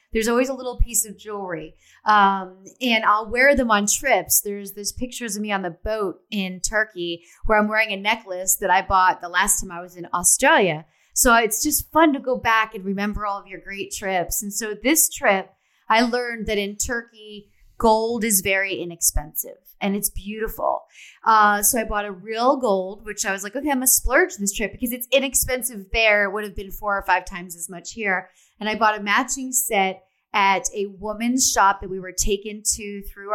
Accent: American